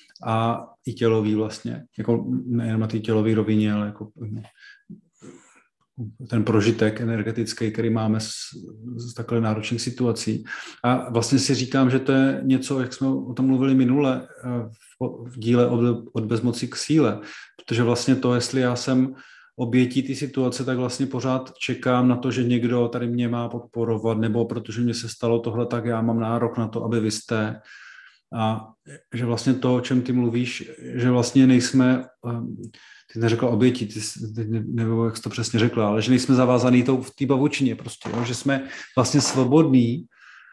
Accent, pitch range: native, 115-135 Hz